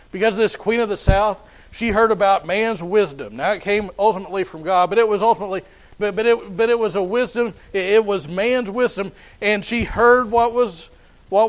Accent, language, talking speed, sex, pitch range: American, English, 210 wpm, male, 190-230 Hz